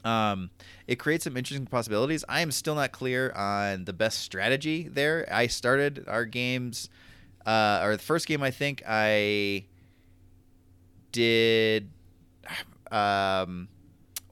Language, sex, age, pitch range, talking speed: English, male, 30-49, 90-120 Hz, 125 wpm